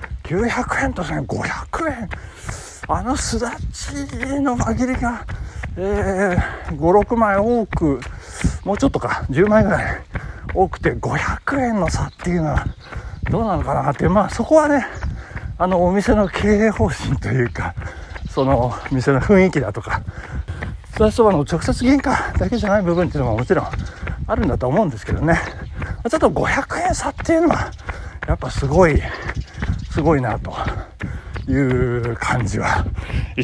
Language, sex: Japanese, male